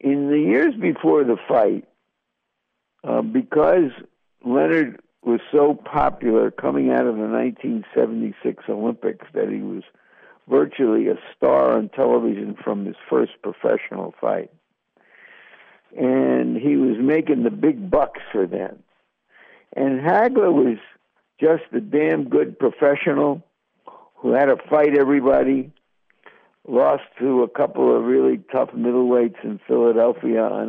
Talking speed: 125 wpm